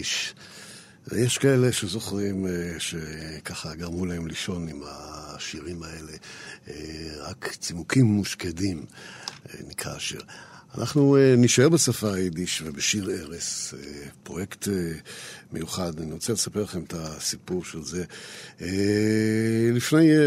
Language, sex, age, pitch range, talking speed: Hebrew, male, 60-79, 85-115 Hz, 95 wpm